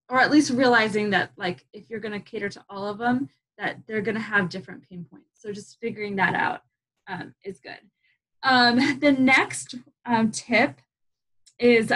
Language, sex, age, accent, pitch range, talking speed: English, female, 20-39, American, 200-255 Hz, 175 wpm